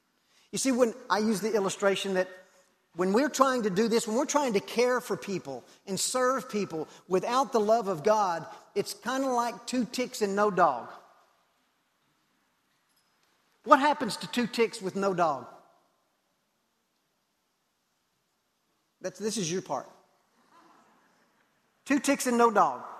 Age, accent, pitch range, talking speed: 50-69, American, 220-275 Hz, 145 wpm